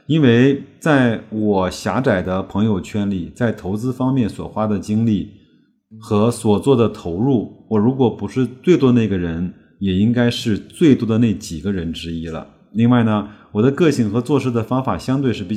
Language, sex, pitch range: Chinese, male, 95-130 Hz